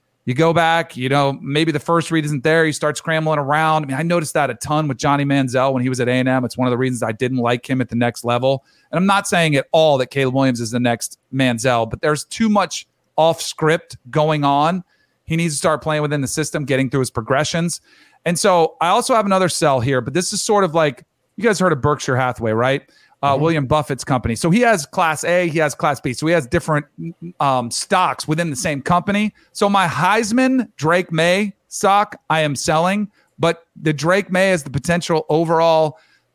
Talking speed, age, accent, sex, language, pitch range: 230 wpm, 40-59, American, male, English, 130-170 Hz